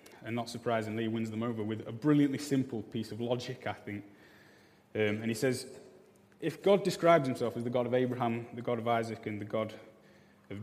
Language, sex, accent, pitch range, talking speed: English, male, British, 110-125 Hz, 210 wpm